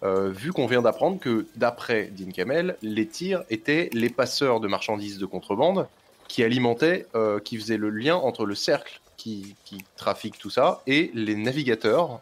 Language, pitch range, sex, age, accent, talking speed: French, 105-130 Hz, male, 20-39, French, 175 wpm